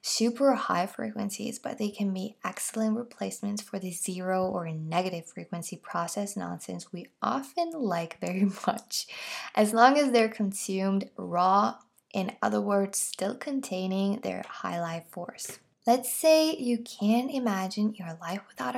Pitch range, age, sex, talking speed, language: 185-230 Hz, 10-29, female, 145 wpm, English